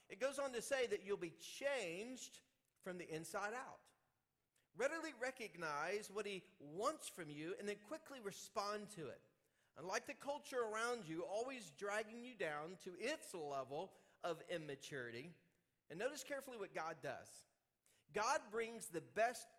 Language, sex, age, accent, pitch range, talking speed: English, male, 40-59, American, 175-240 Hz, 155 wpm